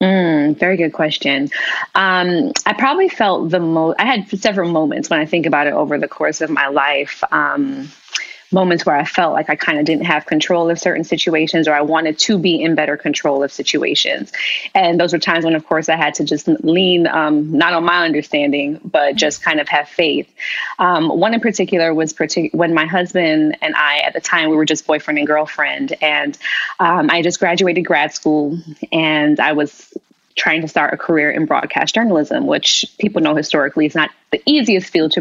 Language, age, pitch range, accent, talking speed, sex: English, 20-39, 155-185 Hz, American, 205 wpm, female